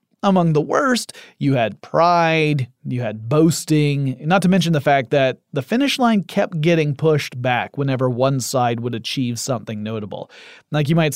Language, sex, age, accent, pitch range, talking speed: English, male, 30-49, American, 130-165 Hz, 170 wpm